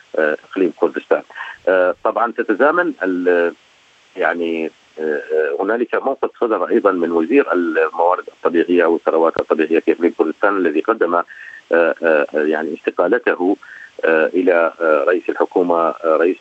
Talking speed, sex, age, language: 110 wpm, male, 50-69, Arabic